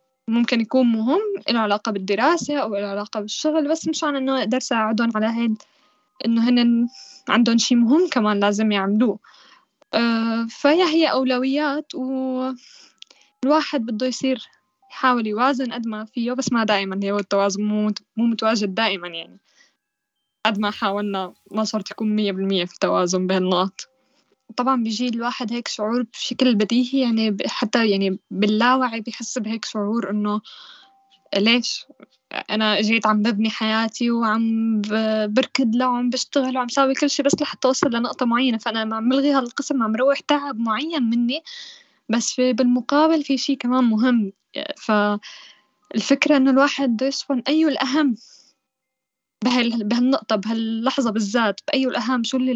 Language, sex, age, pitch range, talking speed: Arabic, female, 10-29, 215-265 Hz, 140 wpm